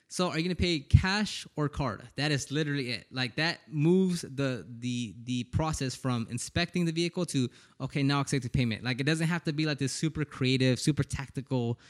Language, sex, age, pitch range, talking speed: English, male, 20-39, 125-160 Hz, 205 wpm